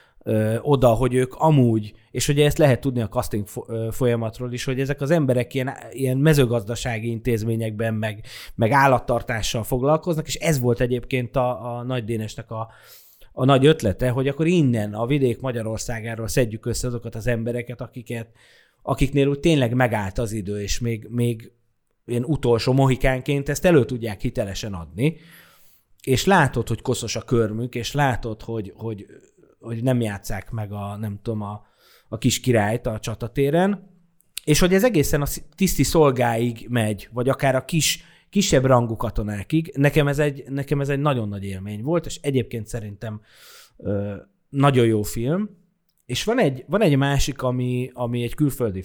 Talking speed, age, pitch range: 160 wpm, 30-49, 110-140 Hz